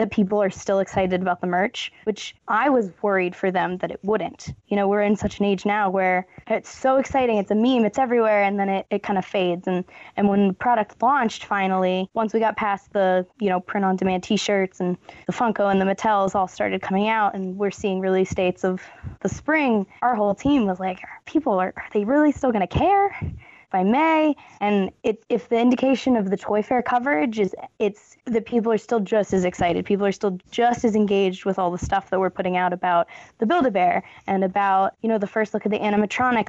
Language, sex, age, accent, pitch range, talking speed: English, female, 20-39, American, 190-220 Hz, 225 wpm